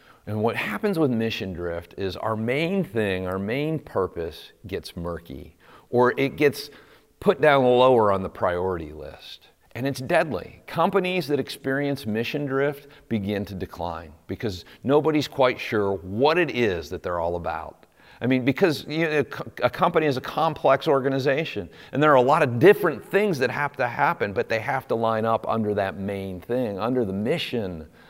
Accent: American